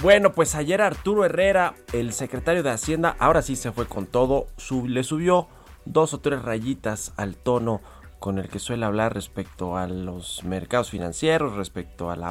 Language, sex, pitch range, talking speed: Spanish, male, 95-125 Hz, 175 wpm